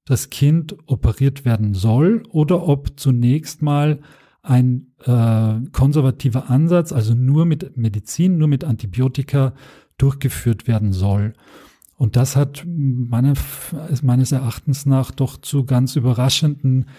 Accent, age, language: German, 40-59, German